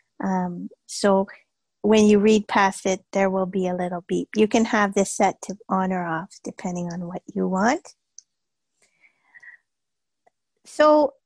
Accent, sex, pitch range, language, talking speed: American, female, 205-245 Hz, English, 150 wpm